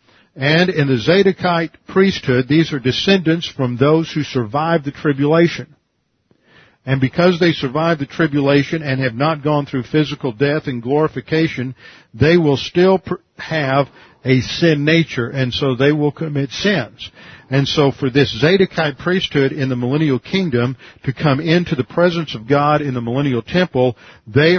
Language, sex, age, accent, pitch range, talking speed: English, male, 50-69, American, 125-155 Hz, 155 wpm